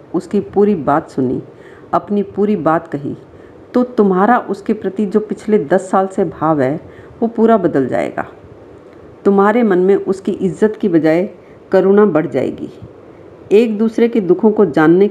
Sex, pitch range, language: female, 175-225 Hz, Hindi